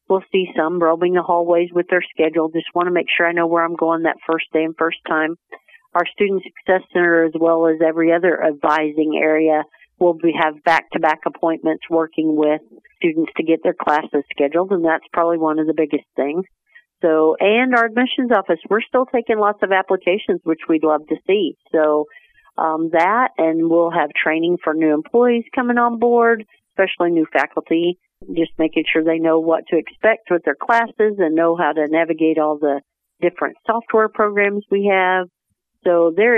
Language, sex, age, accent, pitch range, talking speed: English, female, 50-69, American, 160-190 Hz, 190 wpm